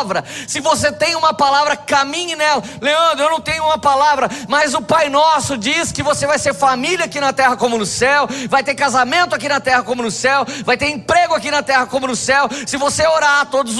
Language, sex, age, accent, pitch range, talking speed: Portuguese, male, 20-39, Brazilian, 260-295 Hz, 220 wpm